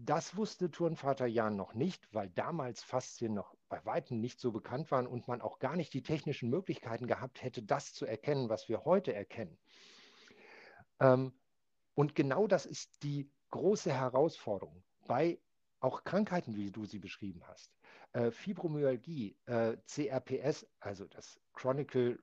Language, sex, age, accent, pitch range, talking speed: German, male, 50-69, German, 115-150 Hz, 145 wpm